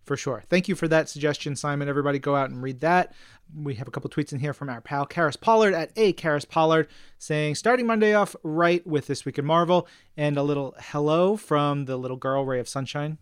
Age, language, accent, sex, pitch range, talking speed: 30-49, English, American, male, 140-175 Hz, 230 wpm